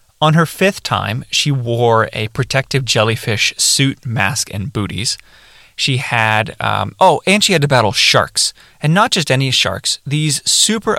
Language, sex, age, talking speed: English, male, 20-39, 165 wpm